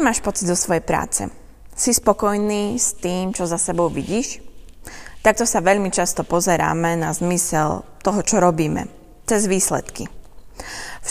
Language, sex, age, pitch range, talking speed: Slovak, female, 20-39, 165-215 Hz, 140 wpm